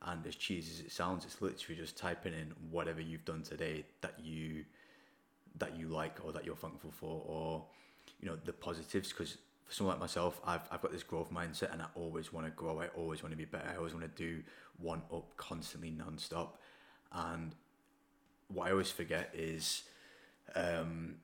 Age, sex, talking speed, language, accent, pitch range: 20-39, male, 195 wpm, English, British, 80-85 Hz